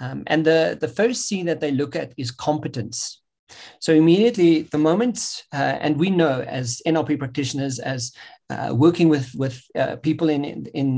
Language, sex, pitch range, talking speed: English, male, 135-165 Hz, 180 wpm